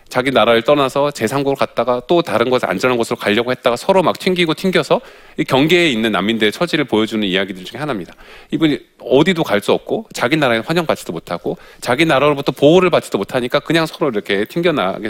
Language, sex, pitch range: Korean, male, 105-160 Hz